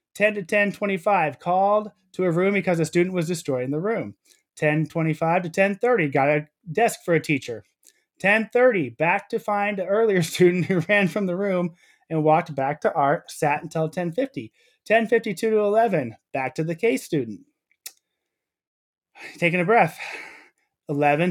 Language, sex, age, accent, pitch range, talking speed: English, male, 20-39, American, 160-210 Hz, 155 wpm